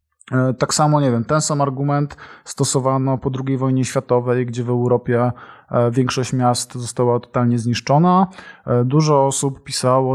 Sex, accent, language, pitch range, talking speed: male, native, Polish, 125-140 Hz, 135 wpm